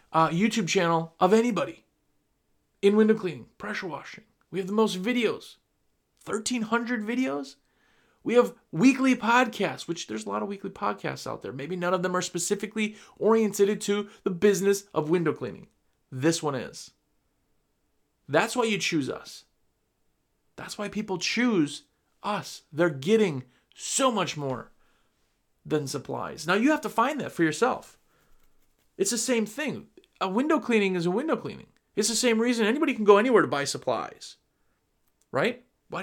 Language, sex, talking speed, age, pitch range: English, male, 160 wpm, 30-49, 175-245 Hz